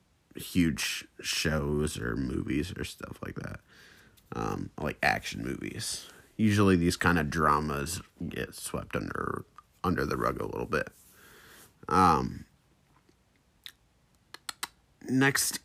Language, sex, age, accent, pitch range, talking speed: English, male, 30-49, American, 80-110 Hz, 105 wpm